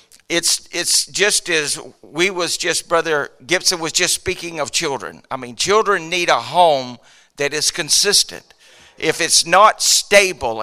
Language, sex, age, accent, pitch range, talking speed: English, male, 50-69, American, 150-180 Hz, 150 wpm